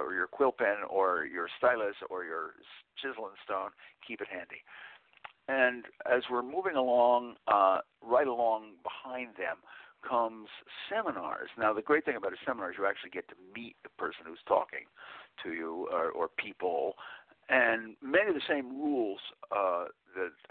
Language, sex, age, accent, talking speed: English, male, 60-79, American, 160 wpm